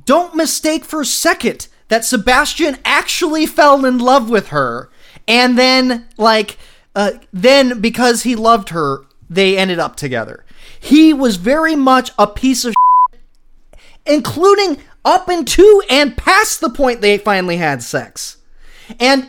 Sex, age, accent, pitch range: male, 30-49, American, 230-315 Hz